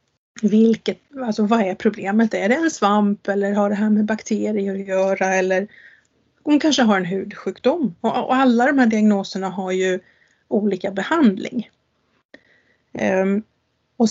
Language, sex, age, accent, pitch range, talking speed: English, female, 30-49, Swedish, 195-245 Hz, 140 wpm